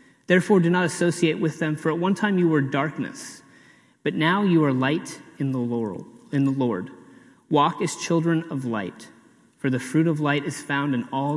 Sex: male